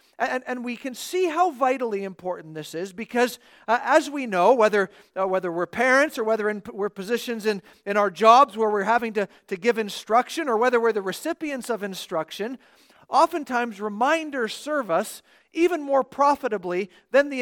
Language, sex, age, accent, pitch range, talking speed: English, male, 50-69, American, 195-260 Hz, 180 wpm